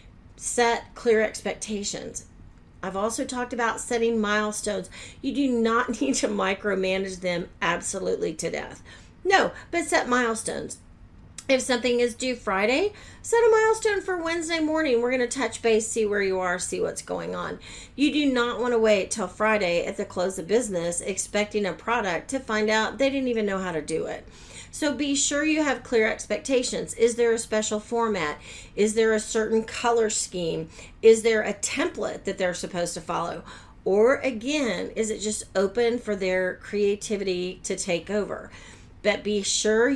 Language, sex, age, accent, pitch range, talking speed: English, female, 40-59, American, 185-245 Hz, 175 wpm